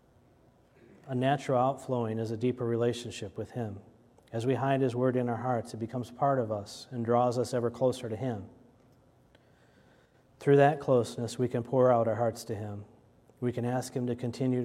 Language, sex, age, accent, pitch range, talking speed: English, male, 40-59, American, 115-130 Hz, 190 wpm